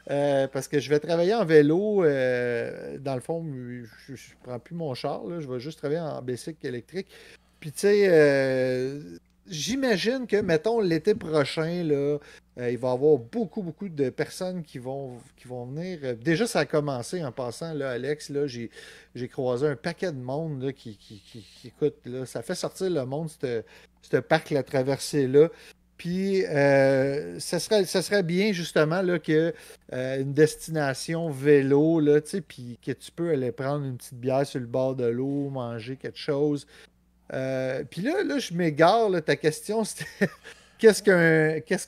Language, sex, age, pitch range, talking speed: French, male, 30-49, 135-170 Hz, 185 wpm